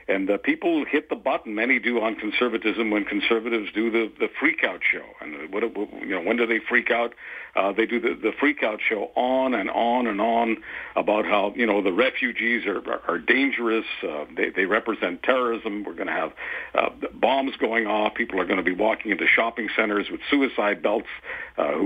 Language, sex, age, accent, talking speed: English, male, 60-79, American, 195 wpm